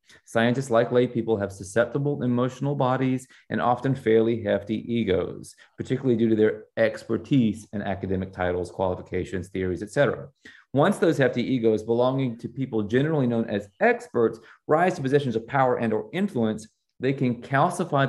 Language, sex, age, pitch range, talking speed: English, male, 30-49, 105-130 Hz, 155 wpm